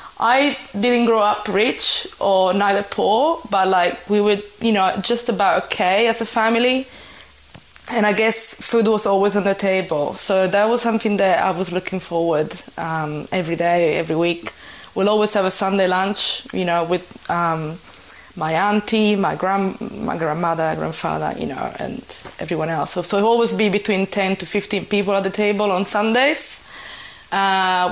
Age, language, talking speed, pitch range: 20-39, English, 175 wpm, 185-225 Hz